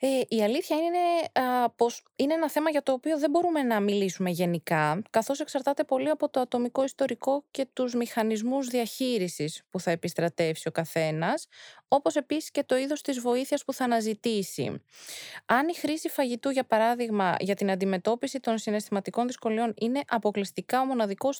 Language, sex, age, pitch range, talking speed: Greek, female, 20-39, 210-275 Hz, 160 wpm